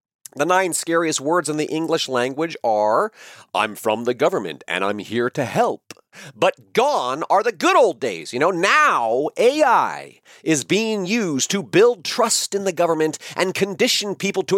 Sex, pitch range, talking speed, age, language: male, 125-190 Hz, 175 wpm, 40-59, English